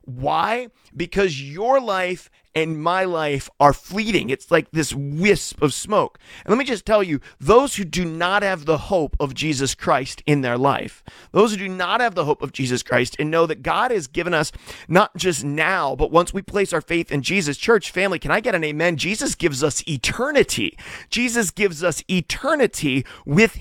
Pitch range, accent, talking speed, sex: 165-225 Hz, American, 200 wpm, male